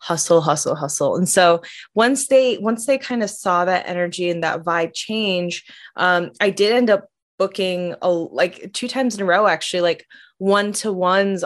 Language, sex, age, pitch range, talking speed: English, female, 20-39, 175-200 Hz, 175 wpm